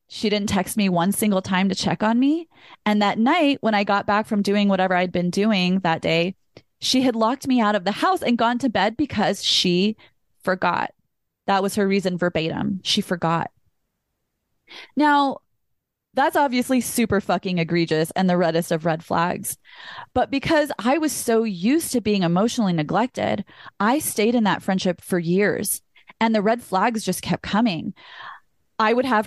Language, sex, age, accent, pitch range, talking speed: English, female, 20-39, American, 185-255 Hz, 180 wpm